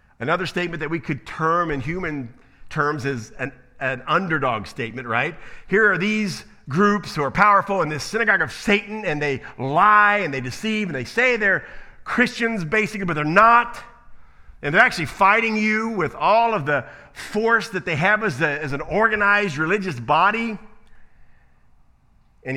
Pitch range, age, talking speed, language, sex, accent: 135-205 Hz, 50-69, 165 wpm, English, male, American